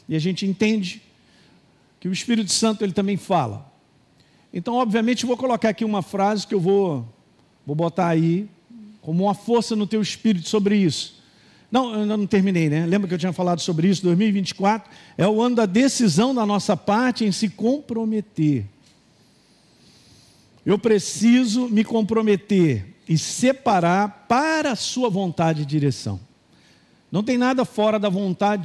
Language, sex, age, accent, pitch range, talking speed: Portuguese, male, 50-69, Brazilian, 165-220 Hz, 160 wpm